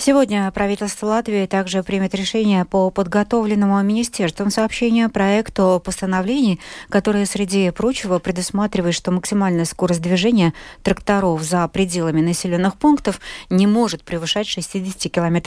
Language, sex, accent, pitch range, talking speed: Russian, female, native, 170-215 Hz, 115 wpm